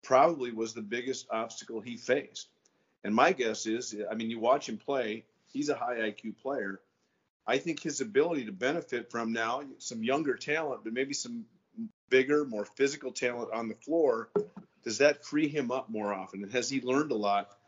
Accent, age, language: American, 50-69, English